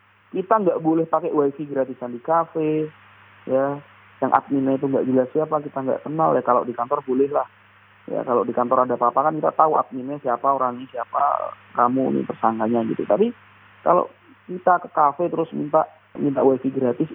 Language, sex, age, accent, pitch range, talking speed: Indonesian, male, 30-49, native, 130-155 Hz, 180 wpm